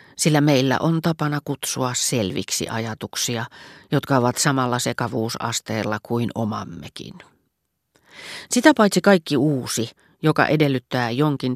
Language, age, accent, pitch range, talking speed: Finnish, 40-59, native, 125-160 Hz, 105 wpm